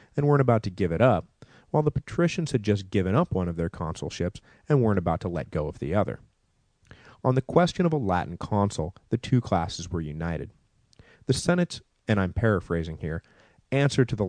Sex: male